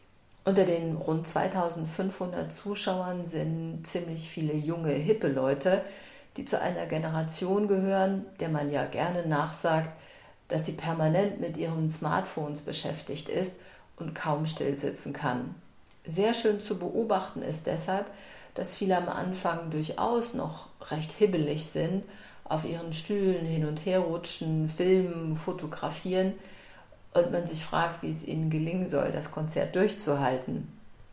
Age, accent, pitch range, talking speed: 40-59, German, 155-190 Hz, 135 wpm